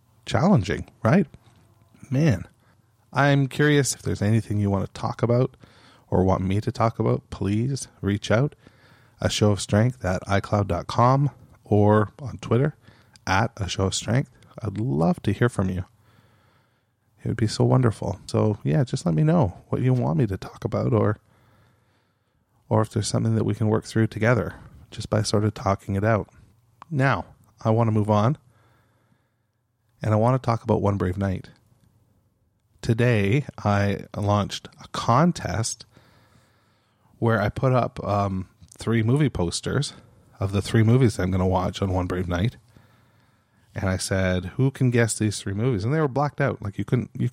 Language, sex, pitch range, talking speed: English, male, 105-130 Hz, 175 wpm